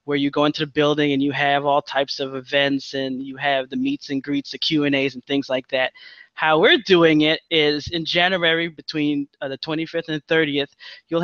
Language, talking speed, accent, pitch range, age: English, 220 wpm, American, 150-205 Hz, 20-39